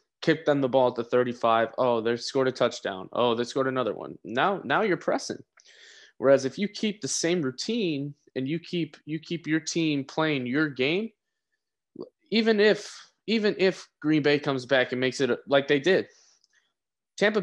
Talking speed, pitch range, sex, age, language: 185 wpm, 130-195 Hz, male, 20-39, English